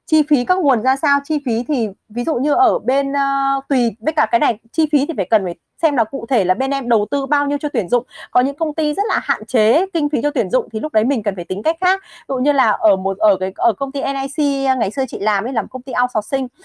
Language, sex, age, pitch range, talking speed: Vietnamese, female, 20-39, 220-290 Hz, 305 wpm